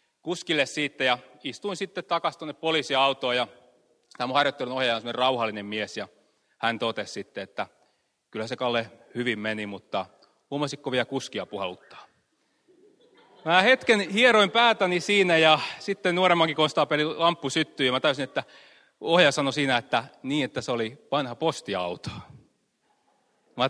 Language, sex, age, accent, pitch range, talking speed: Finnish, male, 30-49, native, 120-170 Hz, 140 wpm